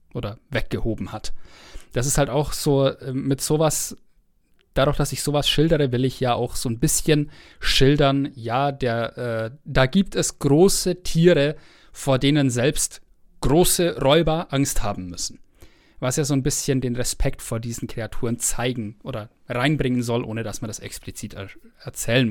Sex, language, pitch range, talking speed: male, German, 120-160 Hz, 155 wpm